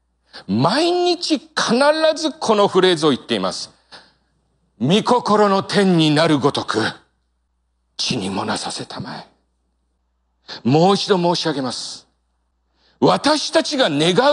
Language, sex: Japanese, male